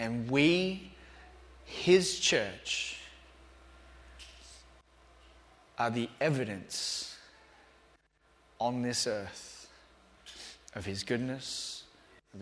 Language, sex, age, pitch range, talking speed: English, male, 30-49, 95-125 Hz, 70 wpm